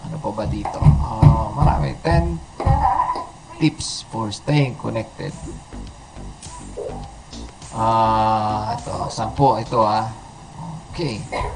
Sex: male